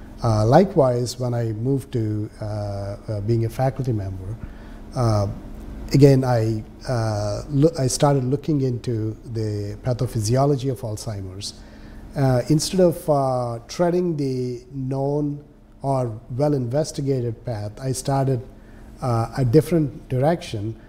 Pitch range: 110-135 Hz